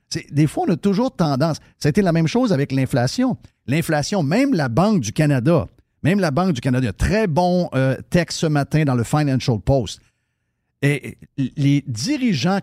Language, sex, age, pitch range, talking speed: French, male, 50-69, 125-175 Hz, 180 wpm